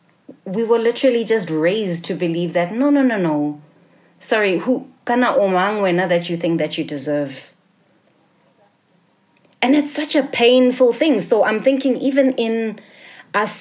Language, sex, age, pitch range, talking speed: English, female, 20-39, 170-215 Hz, 155 wpm